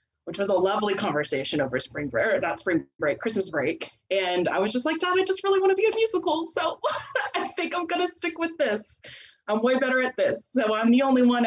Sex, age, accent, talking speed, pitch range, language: female, 20-39, American, 225 wpm, 180-235 Hz, English